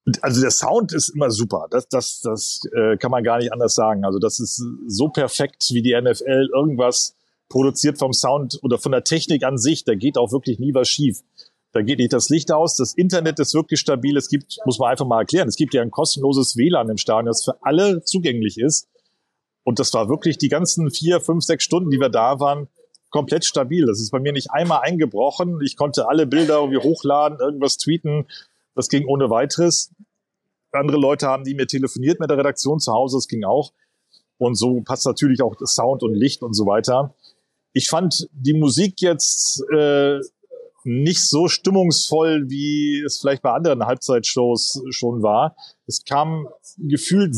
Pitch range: 125-155 Hz